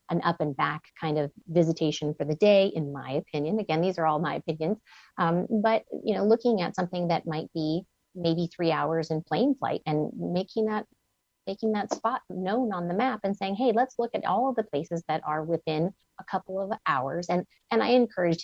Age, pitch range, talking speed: 30-49, 150-190 Hz, 215 wpm